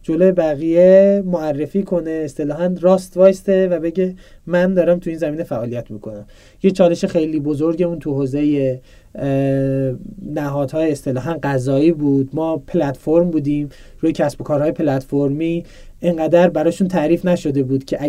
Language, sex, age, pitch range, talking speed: Persian, male, 40-59, 140-170 Hz, 135 wpm